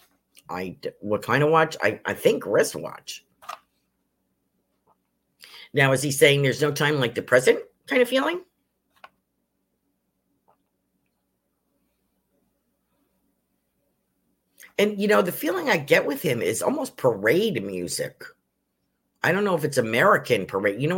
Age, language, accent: 50-69, English, American